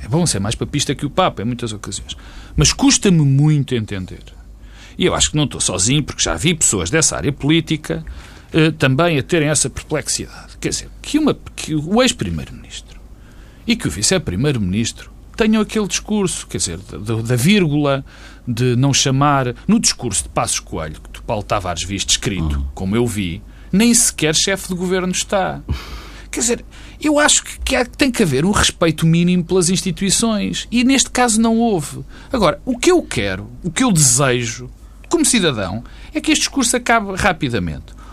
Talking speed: 175 wpm